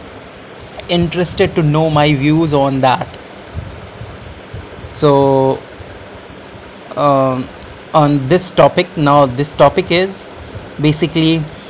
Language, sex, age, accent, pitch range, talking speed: English, male, 30-49, Indian, 140-160 Hz, 85 wpm